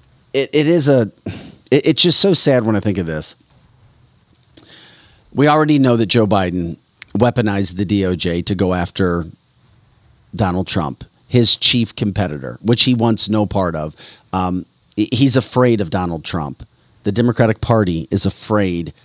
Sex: male